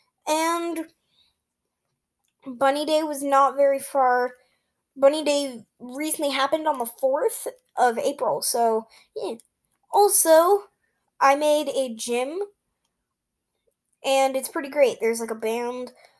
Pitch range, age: 240-300 Hz, 10-29